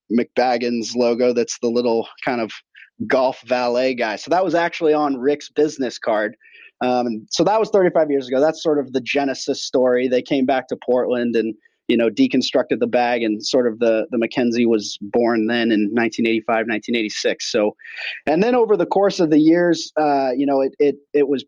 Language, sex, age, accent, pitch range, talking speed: English, male, 30-49, American, 120-150 Hz, 195 wpm